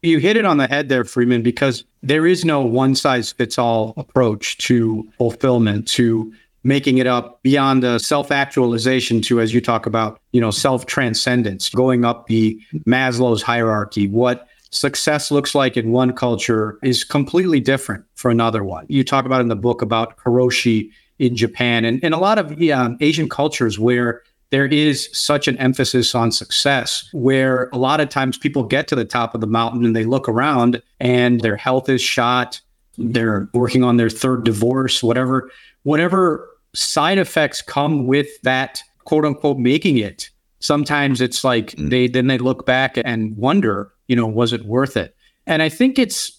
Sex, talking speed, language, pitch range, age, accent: male, 170 wpm, English, 115-140 Hz, 40-59, American